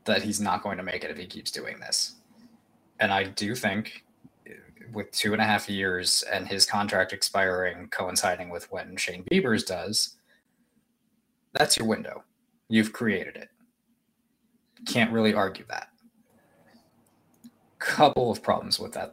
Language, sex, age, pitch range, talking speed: English, male, 20-39, 100-140 Hz, 145 wpm